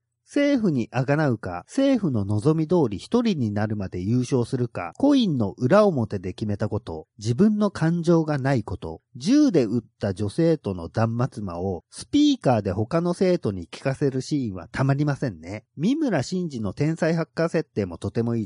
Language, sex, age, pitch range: Japanese, male, 40-59, 105-170 Hz